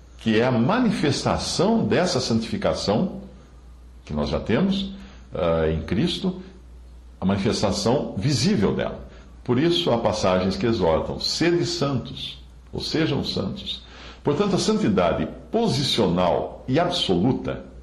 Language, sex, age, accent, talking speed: English, male, 60-79, Brazilian, 110 wpm